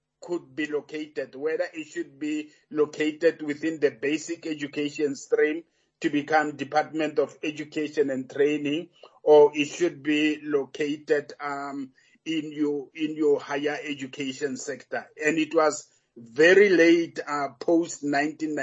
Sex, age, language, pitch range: male, 50-69, English, 145-165 Hz